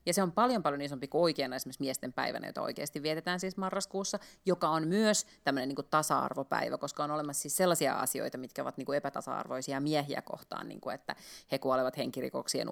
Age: 30-49